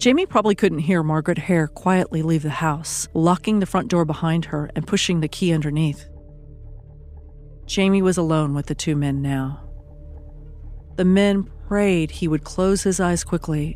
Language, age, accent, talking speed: English, 40-59, American, 165 wpm